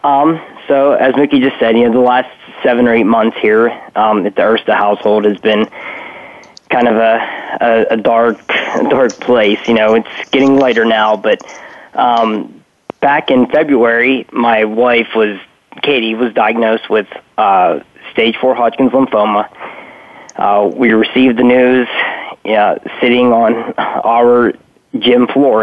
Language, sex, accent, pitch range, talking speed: English, male, American, 110-125 Hz, 155 wpm